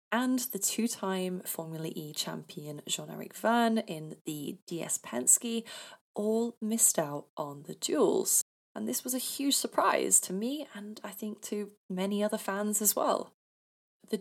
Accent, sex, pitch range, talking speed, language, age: British, female, 170-225 Hz, 160 wpm, English, 20-39